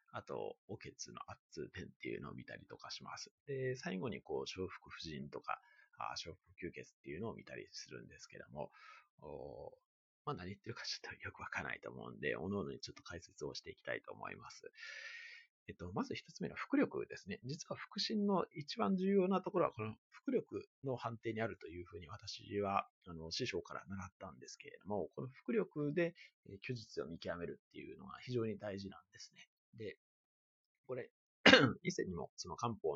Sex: male